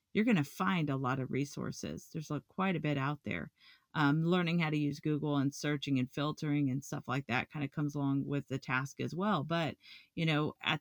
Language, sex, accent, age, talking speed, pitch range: English, female, American, 40-59, 230 wpm, 140-165 Hz